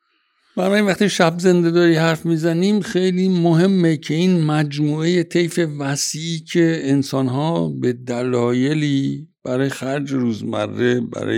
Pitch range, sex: 100-155 Hz, male